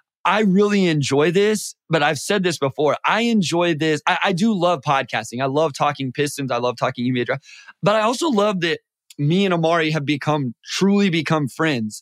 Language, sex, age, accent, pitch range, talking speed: English, male, 20-39, American, 145-180 Hz, 195 wpm